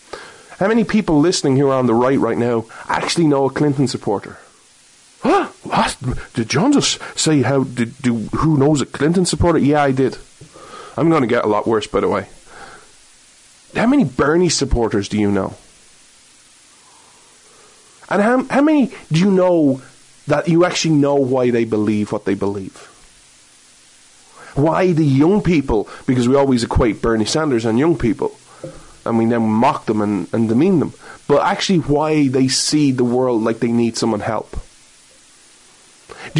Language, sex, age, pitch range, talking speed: English, male, 30-49, 120-165 Hz, 165 wpm